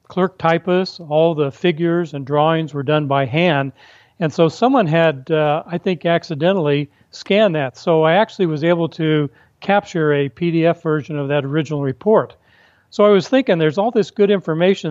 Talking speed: 175 wpm